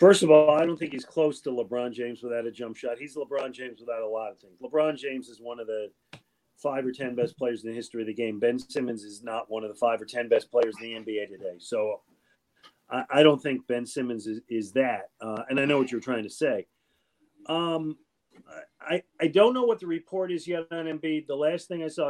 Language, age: English, 40-59